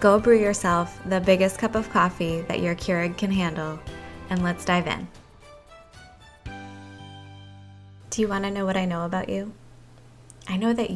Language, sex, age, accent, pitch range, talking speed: English, female, 20-39, American, 160-200 Hz, 165 wpm